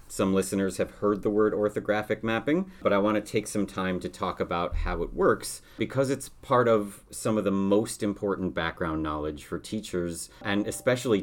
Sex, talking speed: male, 190 wpm